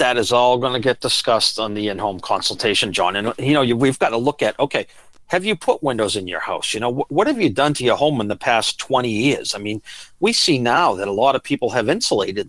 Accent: American